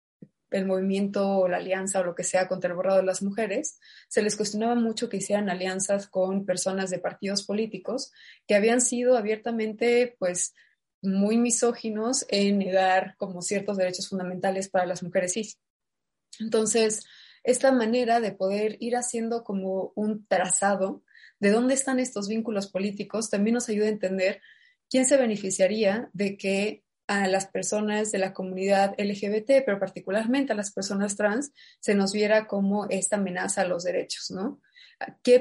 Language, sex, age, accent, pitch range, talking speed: Spanish, female, 20-39, Mexican, 190-230 Hz, 160 wpm